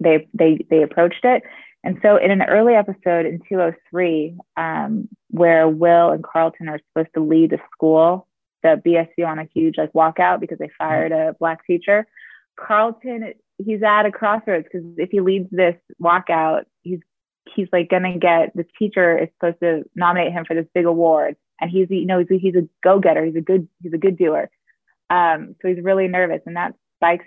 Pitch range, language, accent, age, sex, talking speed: 160-185 Hz, English, American, 20-39, female, 195 wpm